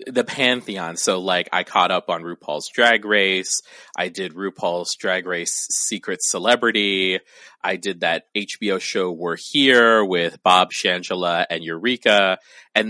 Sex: male